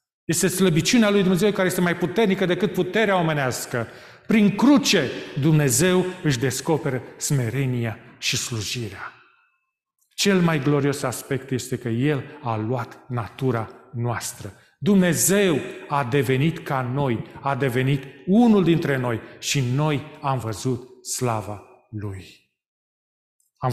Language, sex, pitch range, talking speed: Romanian, male, 125-170 Hz, 120 wpm